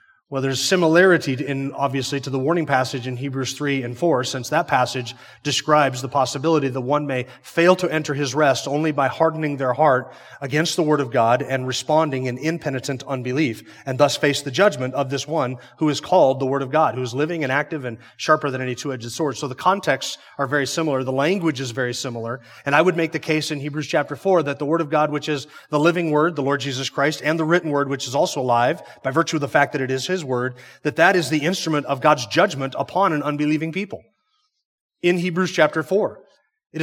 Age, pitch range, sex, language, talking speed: 30-49, 135-165 Hz, male, English, 230 wpm